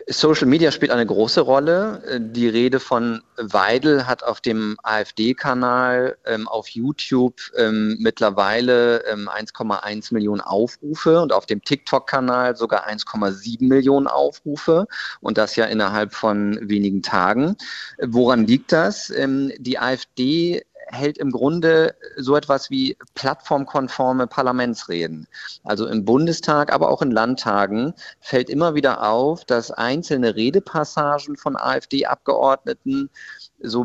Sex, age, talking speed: male, 40-59, 120 wpm